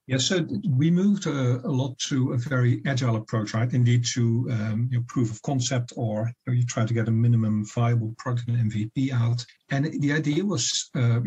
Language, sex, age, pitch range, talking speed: English, male, 50-69, 115-135 Hz, 215 wpm